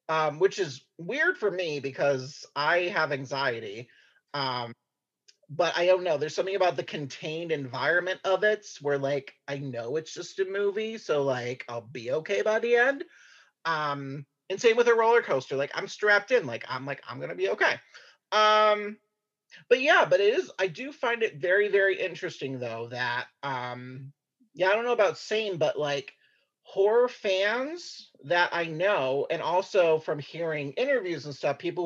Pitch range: 140-205 Hz